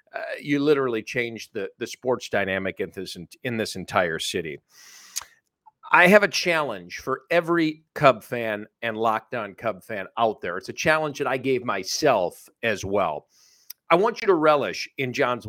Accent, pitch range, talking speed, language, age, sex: American, 125-170 Hz, 175 wpm, English, 50-69, male